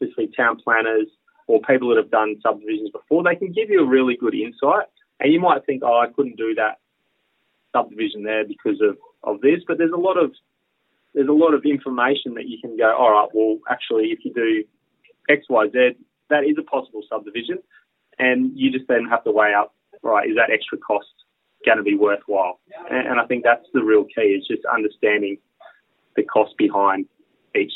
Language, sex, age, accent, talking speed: English, male, 30-49, Australian, 205 wpm